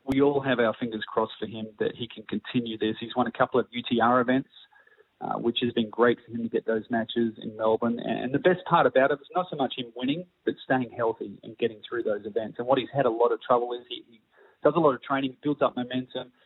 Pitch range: 115-135 Hz